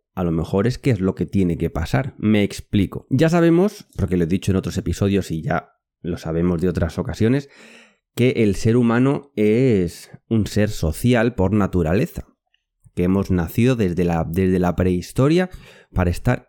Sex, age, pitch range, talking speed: male, 30-49, 90-125 Hz, 175 wpm